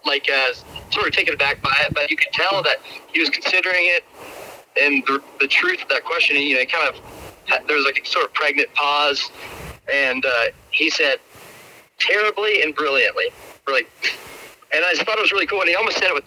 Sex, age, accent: male, 40-59, American